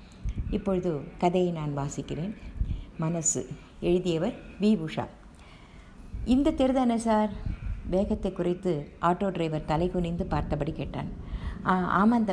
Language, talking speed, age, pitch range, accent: Tamil, 90 wpm, 50-69, 160-210 Hz, native